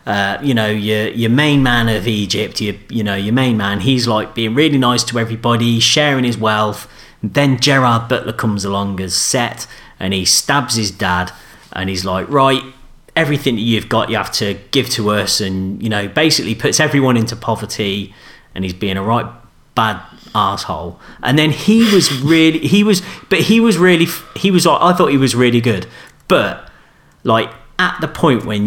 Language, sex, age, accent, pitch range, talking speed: English, male, 30-49, British, 105-150 Hz, 195 wpm